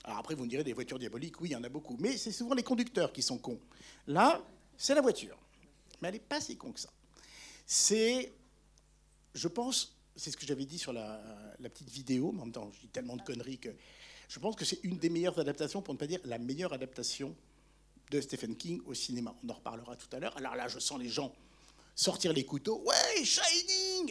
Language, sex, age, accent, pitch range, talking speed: French, male, 50-69, French, 130-185 Hz, 235 wpm